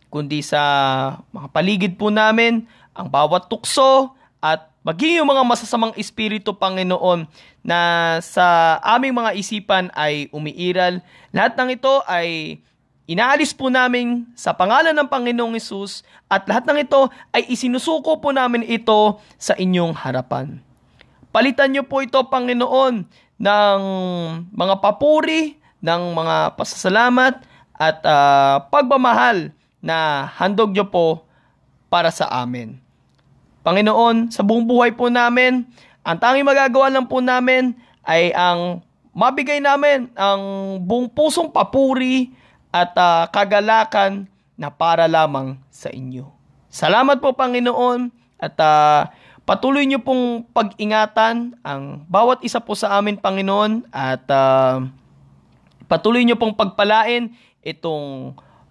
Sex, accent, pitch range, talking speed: male, native, 165-250 Hz, 120 wpm